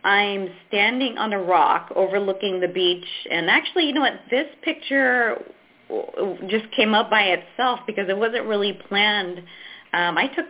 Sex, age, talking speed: female, 20-39, 160 wpm